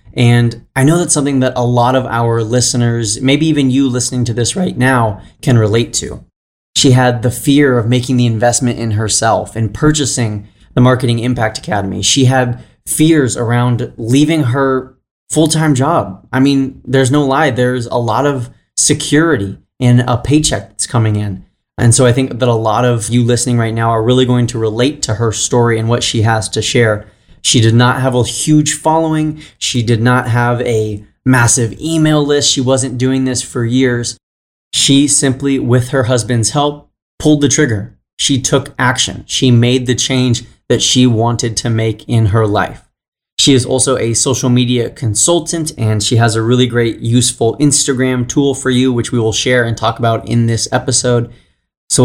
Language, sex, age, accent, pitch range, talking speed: English, male, 20-39, American, 115-135 Hz, 190 wpm